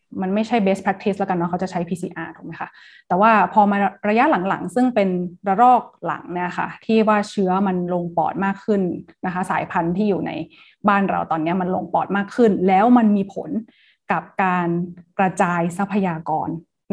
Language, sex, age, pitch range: Thai, female, 20-39, 180-210 Hz